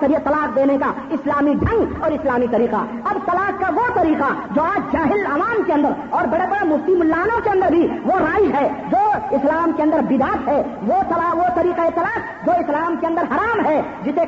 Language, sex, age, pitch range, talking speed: Urdu, female, 40-59, 280-345 Hz, 200 wpm